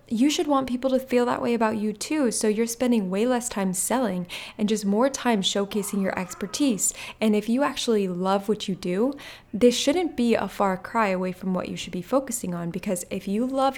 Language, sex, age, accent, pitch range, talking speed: English, female, 20-39, American, 190-235 Hz, 220 wpm